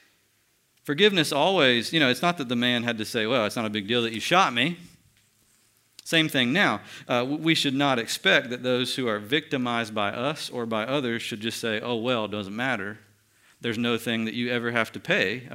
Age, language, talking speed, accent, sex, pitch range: 50-69, English, 220 wpm, American, male, 110-145 Hz